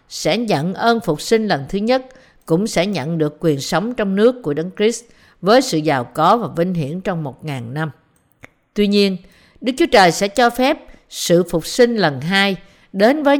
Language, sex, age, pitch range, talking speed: Vietnamese, female, 50-69, 165-230 Hz, 200 wpm